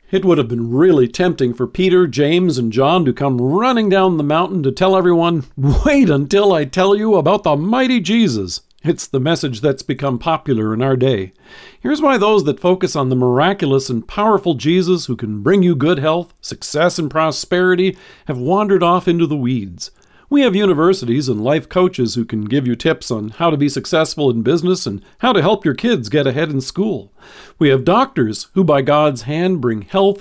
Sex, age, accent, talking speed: male, 50-69, American, 200 wpm